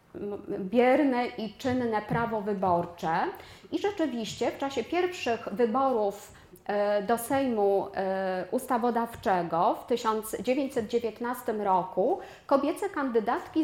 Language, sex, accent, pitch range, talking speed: Polish, female, native, 200-250 Hz, 85 wpm